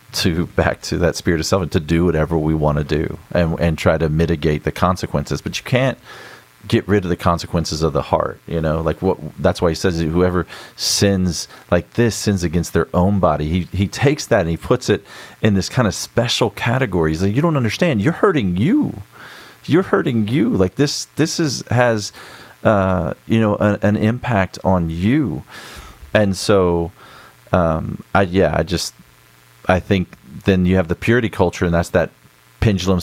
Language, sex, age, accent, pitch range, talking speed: English, male, 40-59, American, 85-110 Hz, 195 wpm